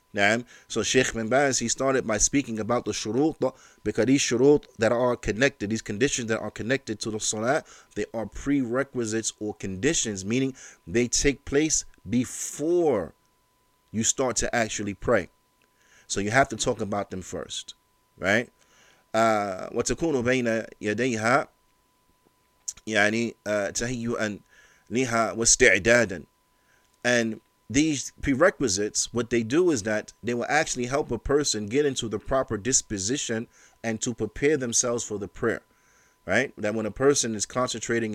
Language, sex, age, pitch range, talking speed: English, male, 30-49, 110-130 Hz, 135 wpm